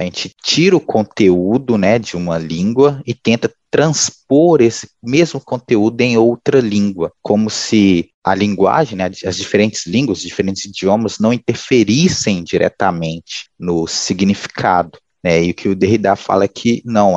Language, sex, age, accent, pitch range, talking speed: Portuguese, male, 20-39, Brazilian, 95-115 Hz, 155 wpm